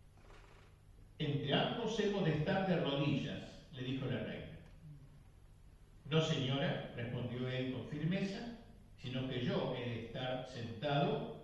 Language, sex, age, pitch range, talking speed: Spanish, male, 50-69, 110-150 Hz, 125 wpm